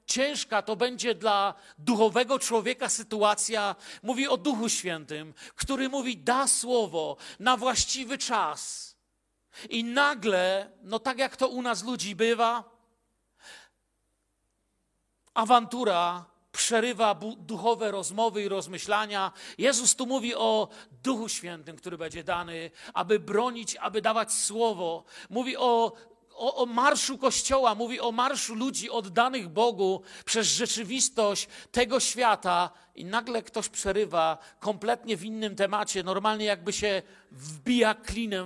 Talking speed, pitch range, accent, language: 120 wpm, 190-240 Hz, native, Polish